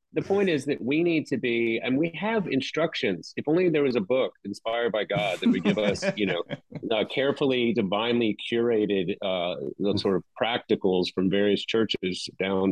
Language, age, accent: English, 40-59, American